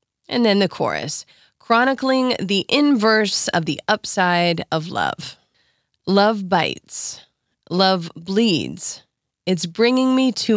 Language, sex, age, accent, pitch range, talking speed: English, female, 20-39, American, 165-220 Hz, 115 wpm